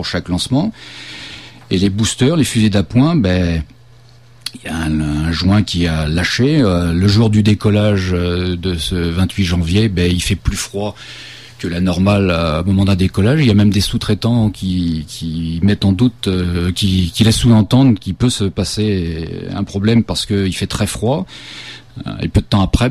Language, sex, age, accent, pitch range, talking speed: French, male, 40-59, French, 90-115 Hz, 190 wpm